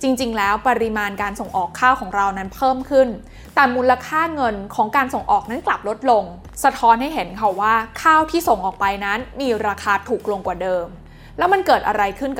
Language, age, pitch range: Thai, 20-39, 215-275 Hz